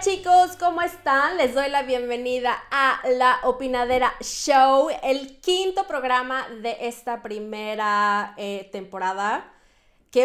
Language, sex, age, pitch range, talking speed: Spanish, female, 30-49, 205-270 Hz, 115 wpm